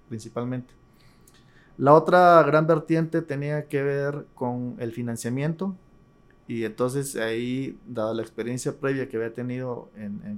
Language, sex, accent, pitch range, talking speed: Spanish, male, Mexican, 115-145 Hz, 135 wpm